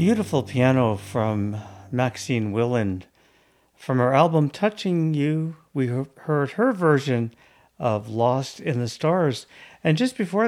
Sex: male